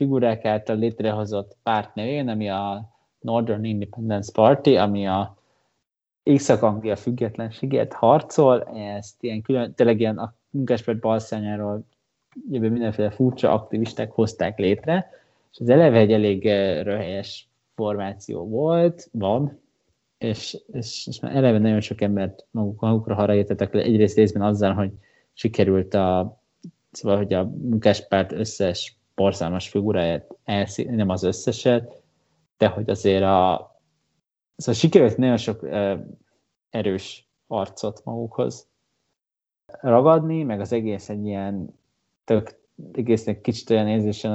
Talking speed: 120 wpm